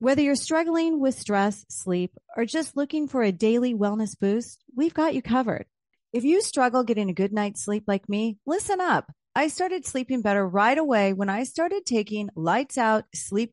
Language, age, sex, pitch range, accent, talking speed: English, 40-59, female, 205-275 Hz, American, 190 wpm